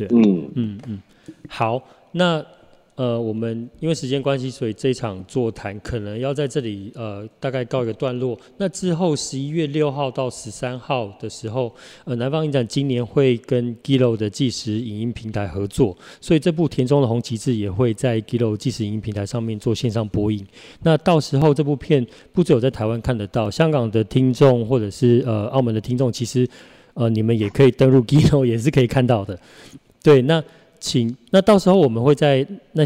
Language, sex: Chinese, male